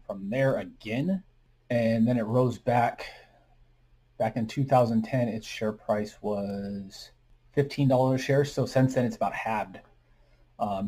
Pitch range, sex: 105-125 Hz, male